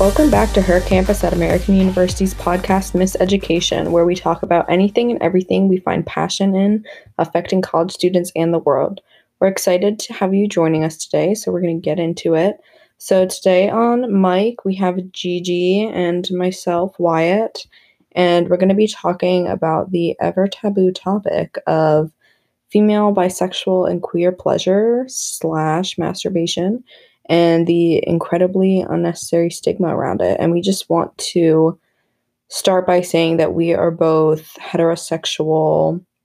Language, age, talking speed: English, 20-39, 150 wpm